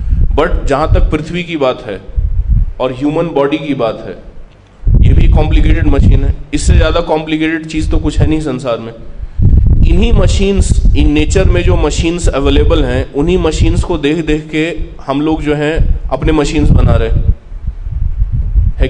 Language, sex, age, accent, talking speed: Hindi, male, 30-49, native, 170 wpm